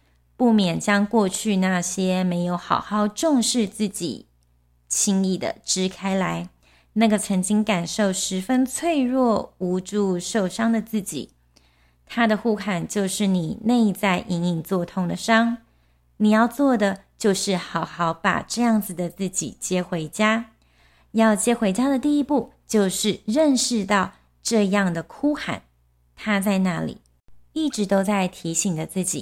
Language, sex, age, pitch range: Chinese, female, 30-49, 170-220 Hz